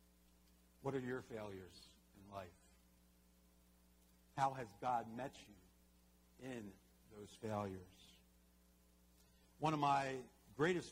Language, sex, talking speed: English, male, 100 wpm